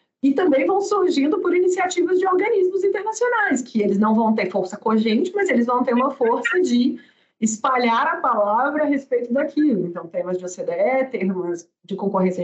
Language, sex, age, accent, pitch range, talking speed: Portuguese, female, 40-59, Brazilian, 195-255 Hz, 175 wpm